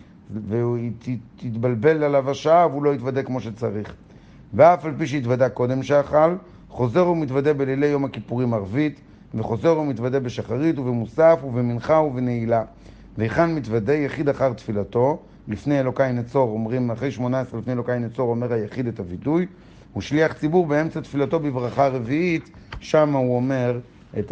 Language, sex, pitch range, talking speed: Hebrew, male, 120-150 Hz, 140 wpm